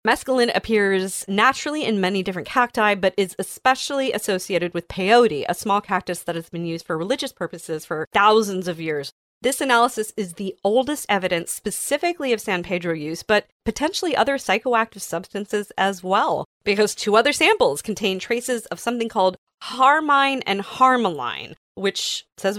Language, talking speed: English, 155 wpm